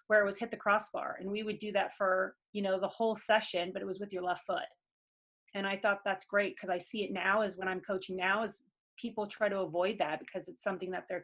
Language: English